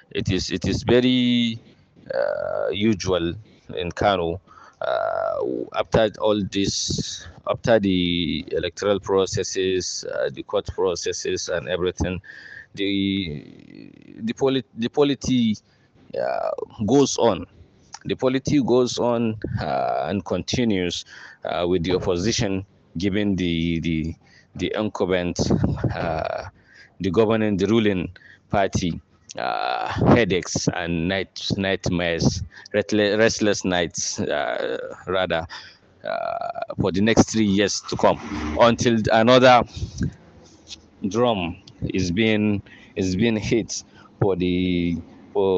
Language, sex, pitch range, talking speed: English, male, 90-120 Hz, 105 wpm